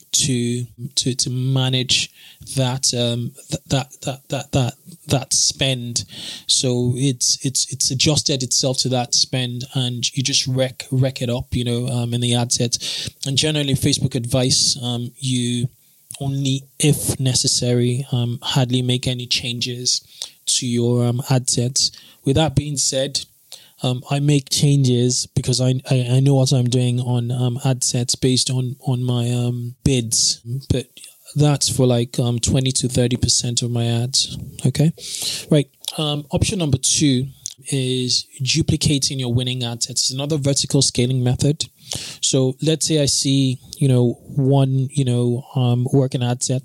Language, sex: English, male